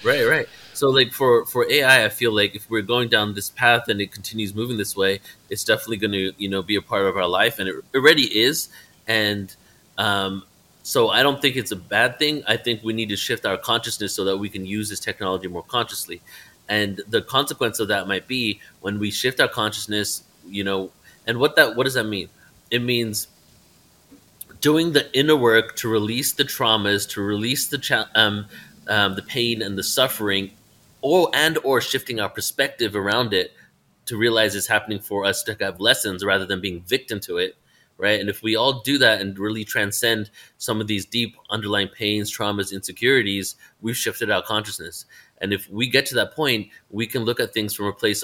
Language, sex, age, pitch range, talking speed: English, male, 30-49, 100-115 Hz, 205 wpm